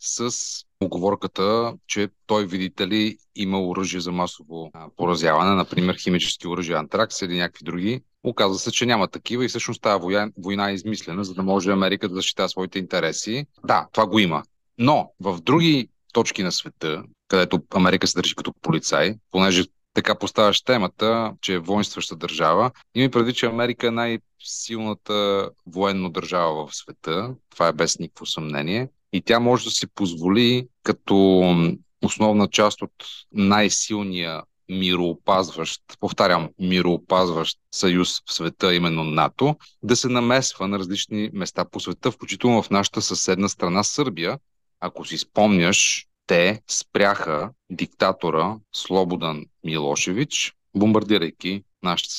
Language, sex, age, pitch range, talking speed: Bulgarian, male, 30-49, 90-115 Hz, 140 wpm